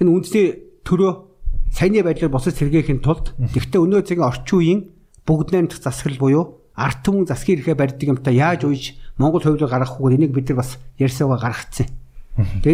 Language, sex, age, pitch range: Korean, male, 60-79, 130-180 Hz